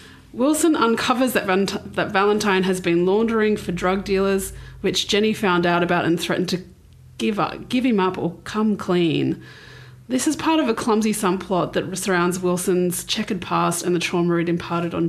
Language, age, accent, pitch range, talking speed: English, 30-49, Australian, 170-200 Hz, 175 wpm